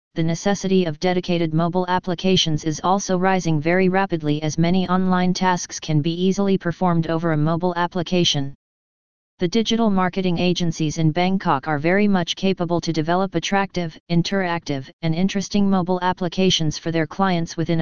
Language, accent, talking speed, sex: English, American, 150 wpm, female